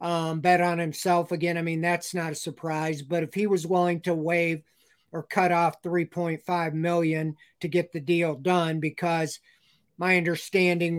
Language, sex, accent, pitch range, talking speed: English, male, American, 165-180 Hz, 170 wpm